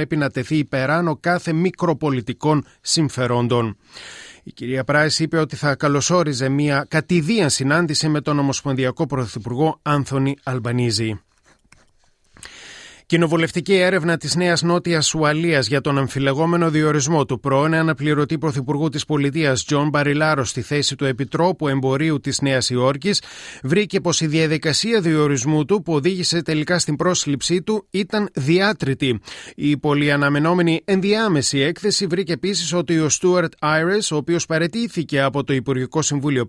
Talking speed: 135 wpm